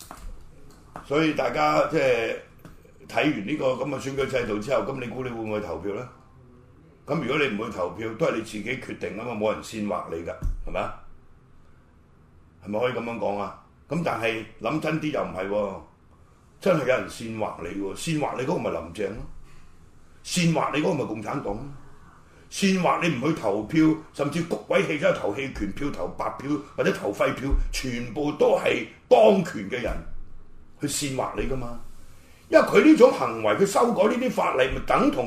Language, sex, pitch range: Chinese, male, 105-160 Hz